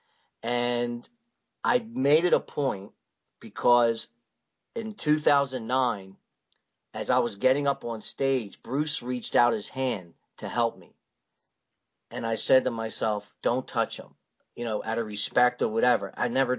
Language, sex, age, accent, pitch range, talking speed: English, male, 40-59, American, 115-145 Hz, 150 wpm